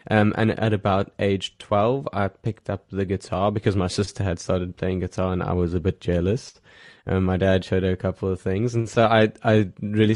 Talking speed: 230 wpm